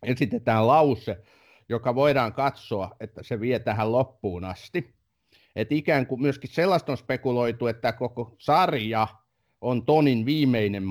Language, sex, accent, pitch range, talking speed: Finnish, male, native, 105-140 Hz, 130 wpm